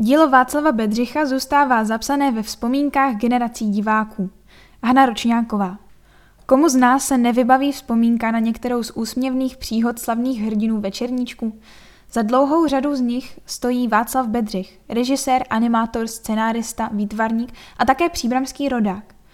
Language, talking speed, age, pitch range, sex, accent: Czech, 125 wpm, 10-29, 220-265 Hz, female, native